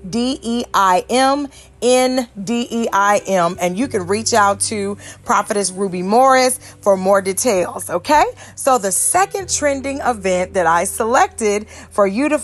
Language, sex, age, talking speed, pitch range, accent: English, female, 30-49, 120 wpm, 195-260 Hz, American